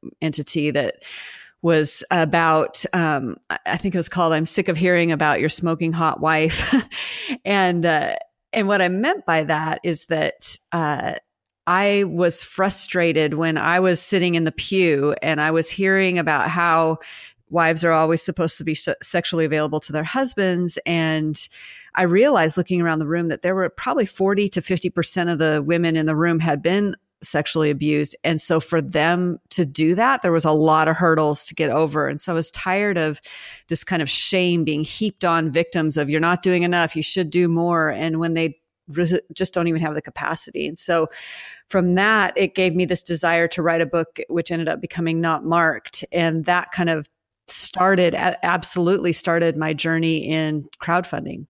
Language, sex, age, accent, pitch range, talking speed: English, female, 40-59, American, 160-180 Hz, 185 wpm